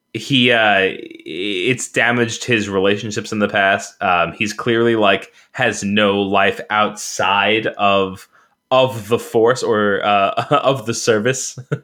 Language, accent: English, American